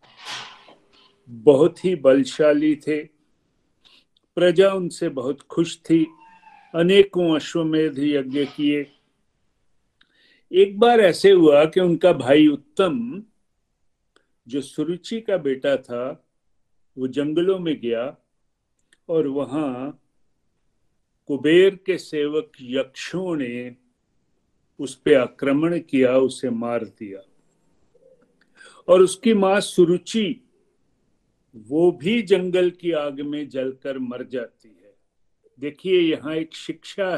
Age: 50-69